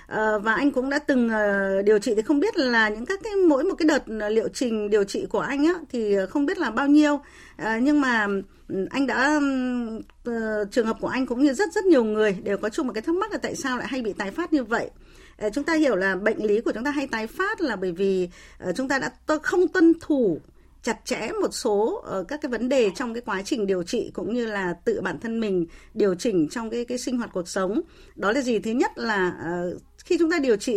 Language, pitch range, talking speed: Vietnamese, 200-300 Hz, 240 wpm